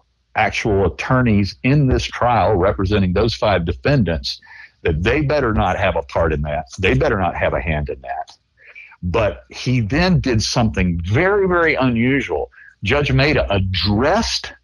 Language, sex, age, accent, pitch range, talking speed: English, male, 60-79, American, 80-130 Hz, 150 wpm